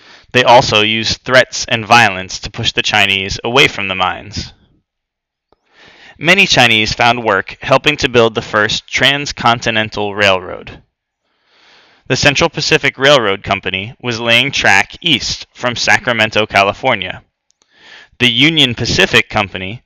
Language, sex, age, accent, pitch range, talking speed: English, male, 20-39, American, 105-130 Hz, 125 wpm